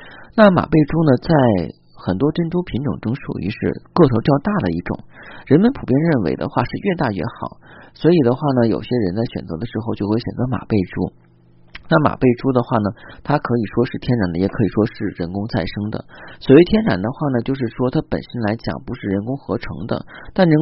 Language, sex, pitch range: Chinese, male, 100-140 Hz